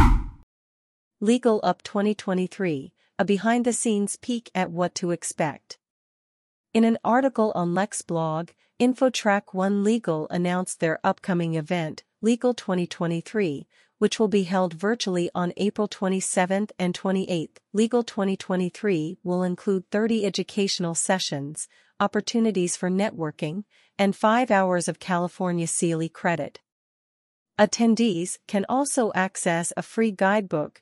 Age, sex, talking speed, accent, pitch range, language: 40-59, female, 115 wpm, American, 170-210 Hz, English